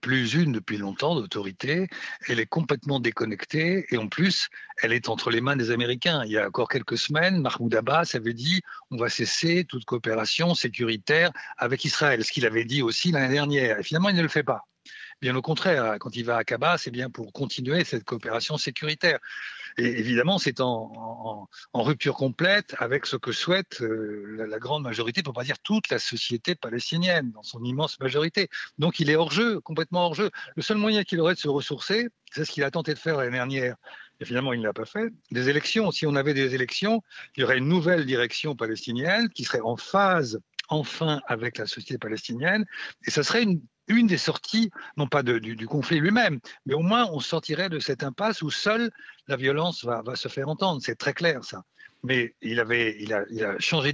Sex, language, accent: male, French, French